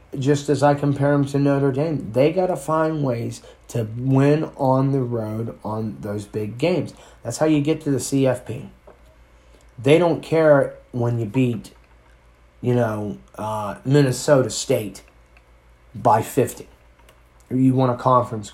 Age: 30-49